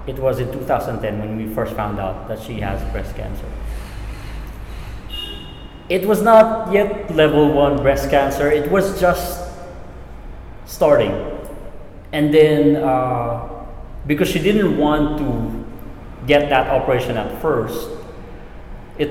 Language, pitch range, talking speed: English, 110-145 Hz, 125 wpm